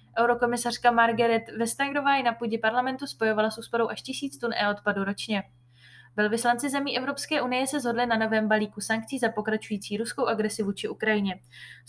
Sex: female